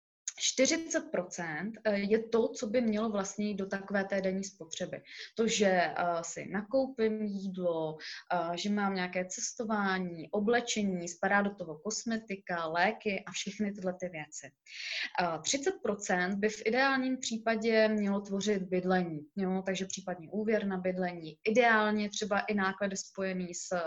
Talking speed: 135 wpm